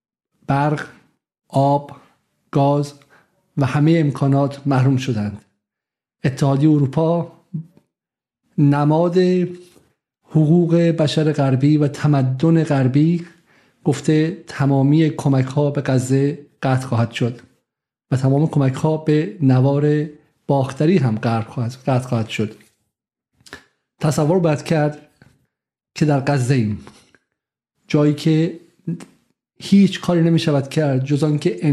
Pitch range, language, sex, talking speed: 135-160 Hz, Persian, male, 95 wpm